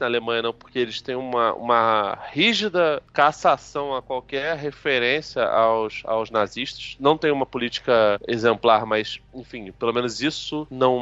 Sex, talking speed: male, 145 wpm